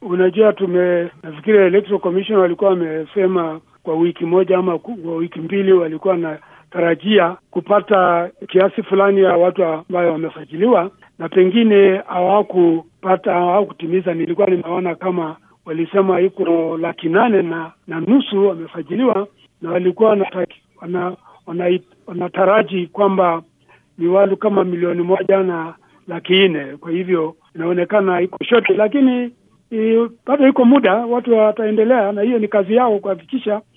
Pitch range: 175-215 Hz